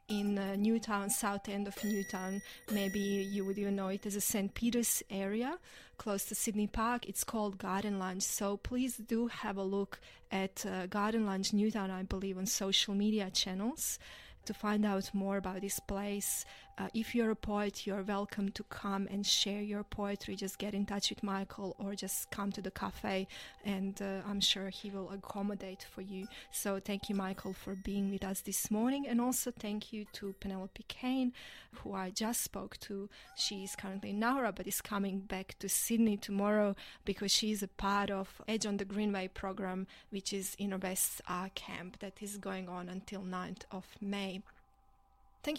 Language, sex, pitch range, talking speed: English, female, 195-215 Hz, 190 wpm